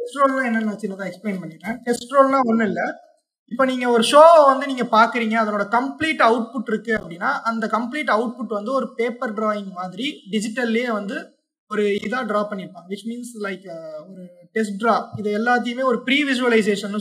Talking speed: 175 wpm